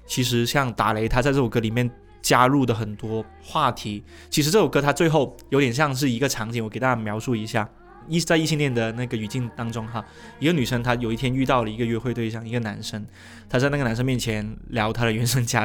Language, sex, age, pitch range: Chinese, male, 20-39, 115-130 Hz